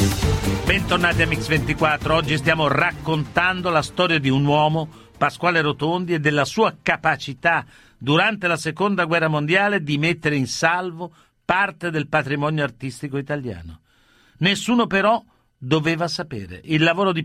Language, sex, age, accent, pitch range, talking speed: Italian, male, 50-69, native, 140-175 Hz, 135 wpm